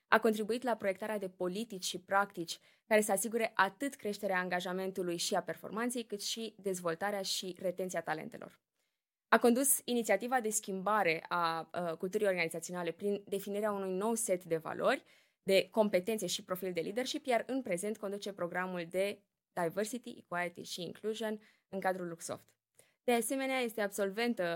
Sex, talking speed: female, 150 wpm